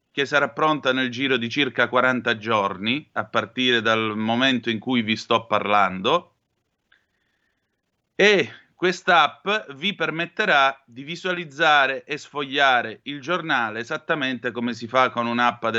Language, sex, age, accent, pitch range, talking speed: Italian, male, 30-49, native, 115-155 Hz, 135 wpm